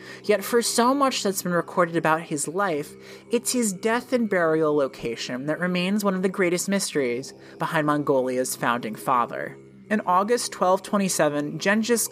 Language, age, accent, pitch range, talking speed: English, 30-49, American, 145-205 Hz, 155 wpm